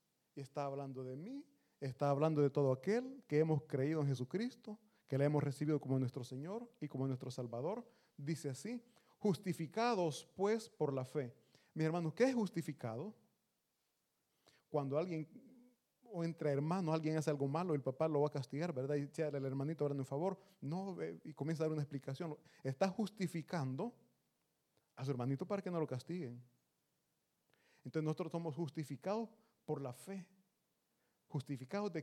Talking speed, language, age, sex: 165 wpm, Italian, 30-49, male